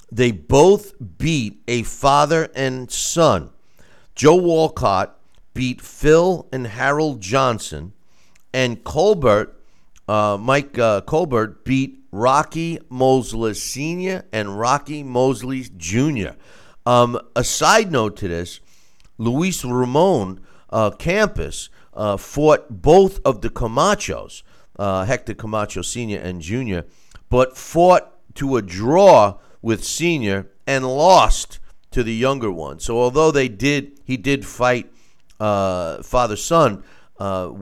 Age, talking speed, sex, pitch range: 50-69, 120 wpm, male, 95-130 Hz